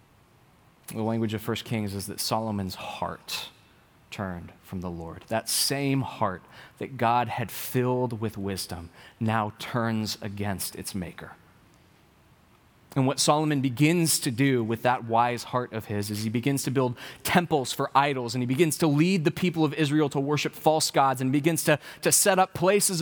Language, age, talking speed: English, 20-39, 175 wpm